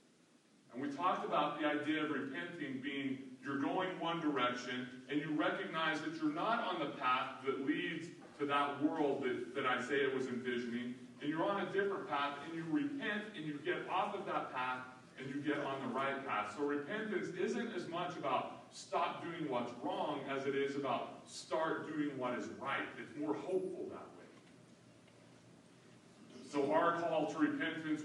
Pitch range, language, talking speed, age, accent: 135-185 Hz, English, 180 wpm, 40-59, American